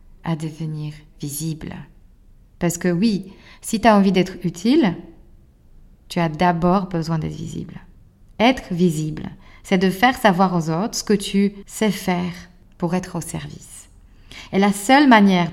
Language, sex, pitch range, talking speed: French, female, 165-205 Hz, 150 wpm